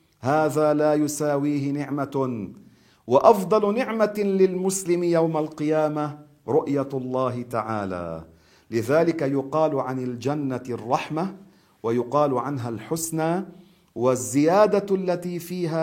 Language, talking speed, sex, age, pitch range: Arabic, 85 wpm, male, 50-69, 130-165 Hz